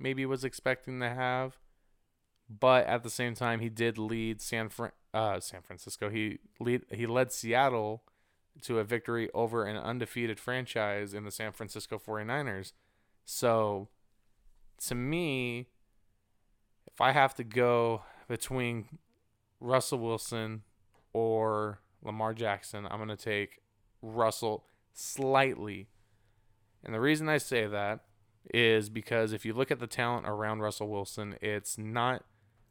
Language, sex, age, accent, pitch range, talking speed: English, male, 20-39, American, 105-125 Hz, 135 wpm